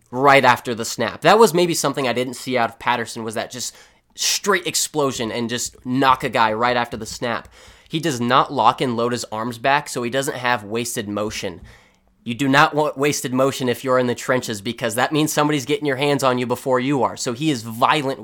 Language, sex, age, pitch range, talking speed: English, male, 20-39, 115-135 Hz, 230 wpm